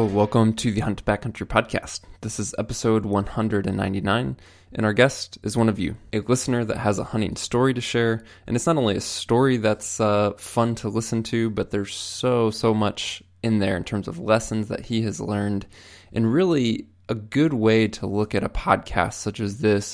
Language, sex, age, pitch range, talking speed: English, male, 20-39, 100-115 Hz, 200 wpm